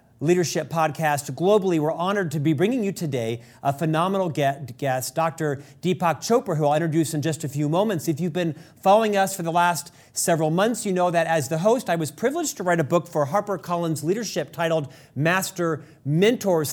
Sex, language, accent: male, English, American